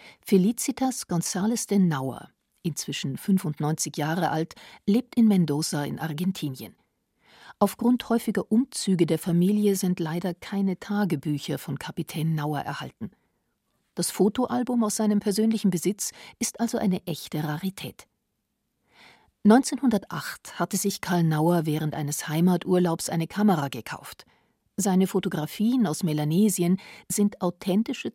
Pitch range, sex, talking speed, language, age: 160-215 Hz, female, 115 wpm, German, 50-69